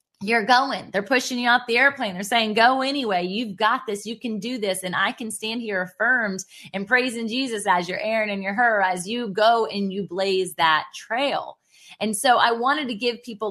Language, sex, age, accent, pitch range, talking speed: English, female, 20-39, American, 180-235 Hz, 220 wpm